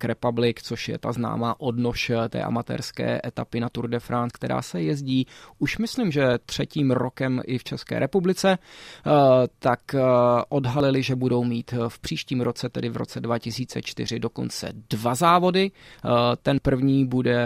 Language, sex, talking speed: Czech, male, 150 wpm